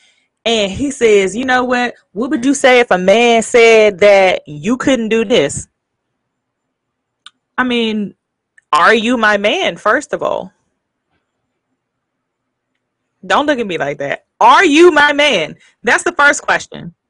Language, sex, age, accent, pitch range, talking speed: English, female, 20-39, American, 205-300 Hz, 145 wpm